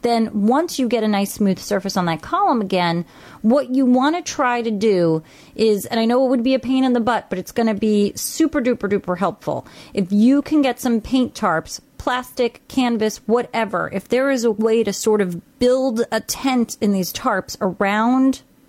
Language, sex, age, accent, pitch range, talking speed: English, female, 30-49, American, 185-235 Hz, 210 wpm